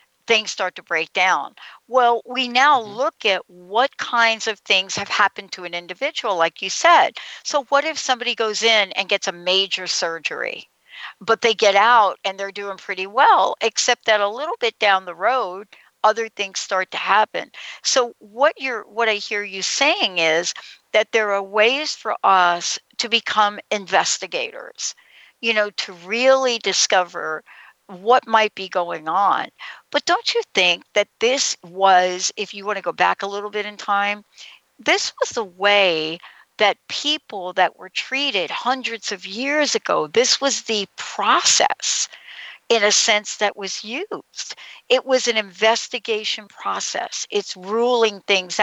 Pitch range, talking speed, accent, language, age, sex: 195-245 Hz, 165 wpm, American, English, 60-79, female